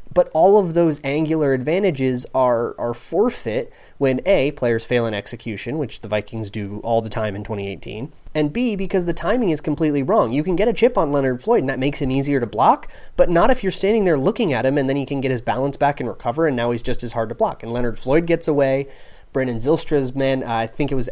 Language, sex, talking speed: English, male, 245 wpm